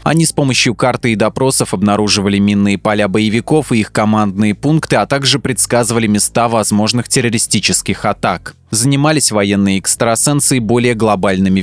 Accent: native